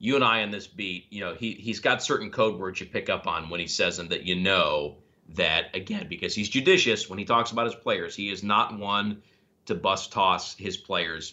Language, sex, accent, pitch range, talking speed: English, male, American, 105-130 Hz, 240 wpm